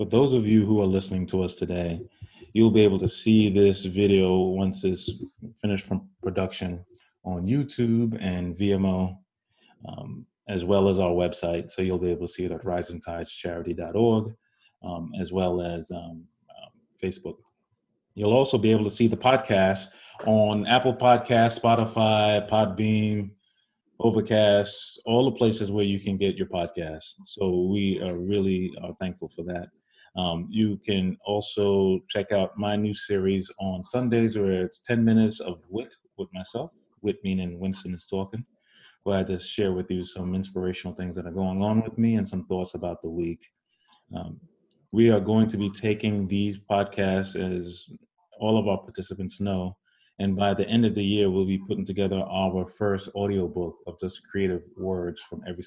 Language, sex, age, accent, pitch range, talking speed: English, male, 30-49, American, 90-105 Hz, 170 wpm